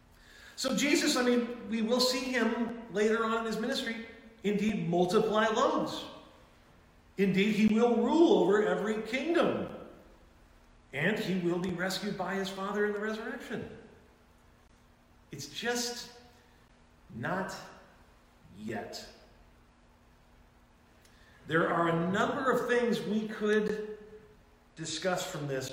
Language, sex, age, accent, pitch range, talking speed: English, male, 40-59, American, 150-220 Hz, 115 wpm